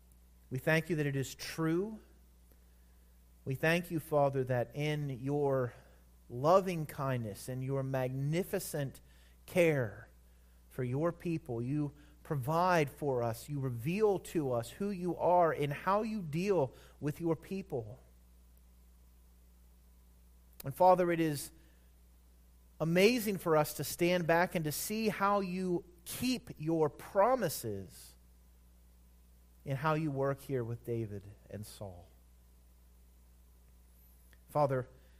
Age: 30-49